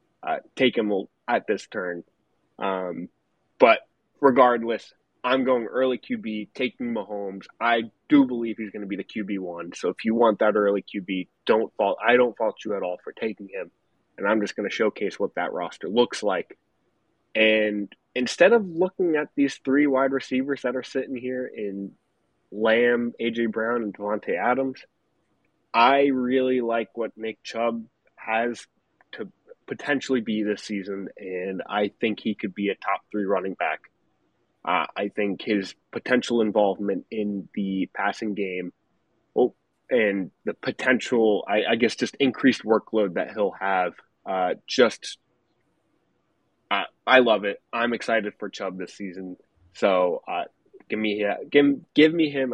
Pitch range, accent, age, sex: 100-125 Hz, American, 20-39, male